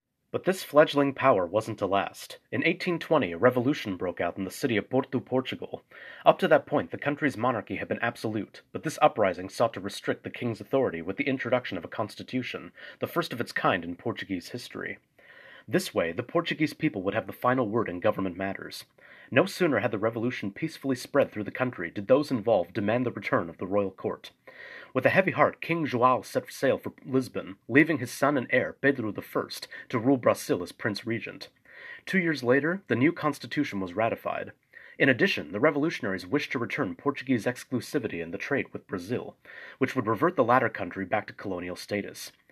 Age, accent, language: 30-49, American, English